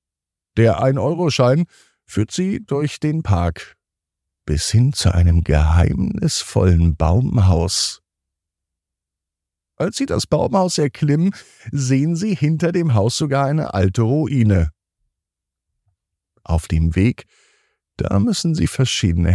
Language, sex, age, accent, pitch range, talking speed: German, male, 50-69, German, 85-130 Hz, 105 wpm